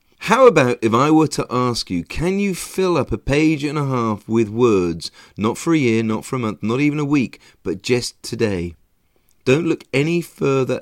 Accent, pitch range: British, 110-150 Hz